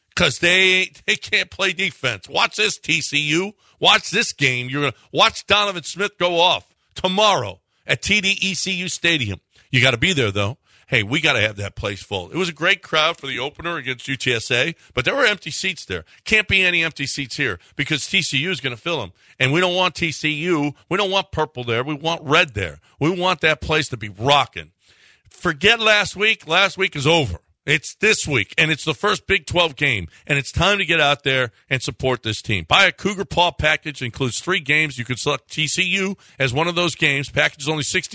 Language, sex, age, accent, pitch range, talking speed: English, male, 50-69, American, 130-180 Hz, 210 wpm